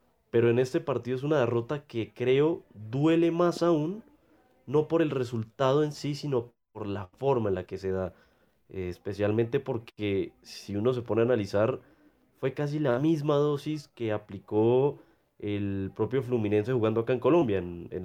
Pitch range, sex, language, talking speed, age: 105-135 Hz, male, Spanish, 175 wpm, 30-49